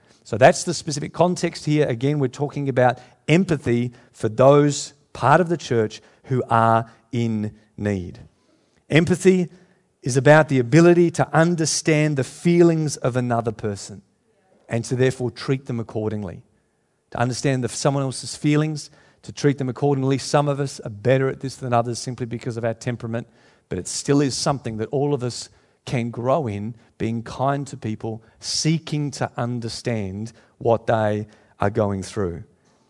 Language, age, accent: English, 50-69, Australian